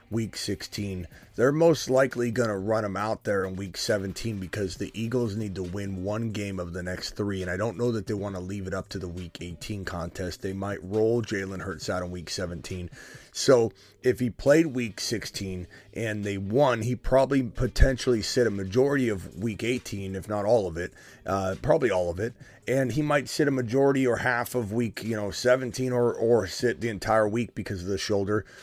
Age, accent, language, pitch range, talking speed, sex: 30-49, American, English, 95-120 Hz, 215 wpm, male